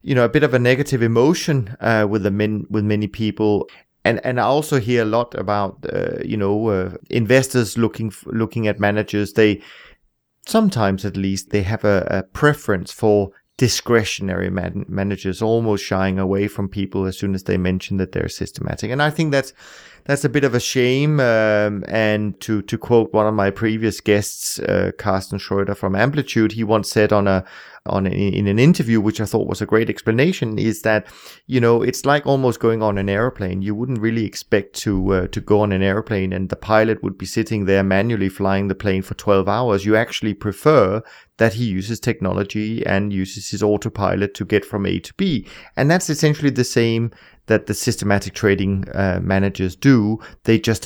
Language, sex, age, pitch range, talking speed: English, male, 30-49, 95-115 Hz, 200 wpm